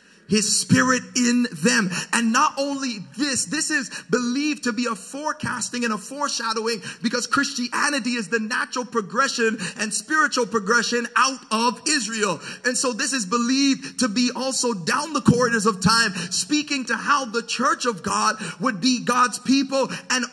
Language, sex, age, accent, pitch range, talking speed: English, male, 30-49, American, 225-265 Hz, 160 wpm